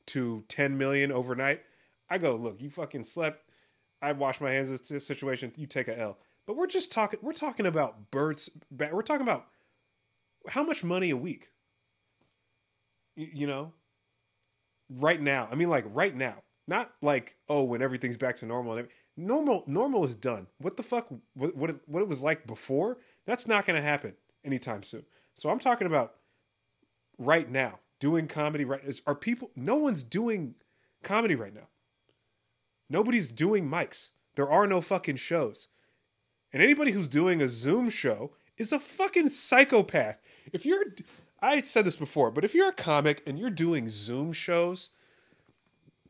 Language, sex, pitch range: English, male, 130-195 Hz